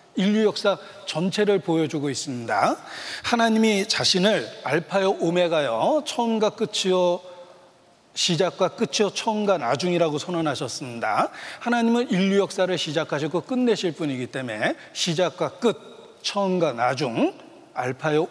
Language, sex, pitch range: Korean, male, 155-210 Hz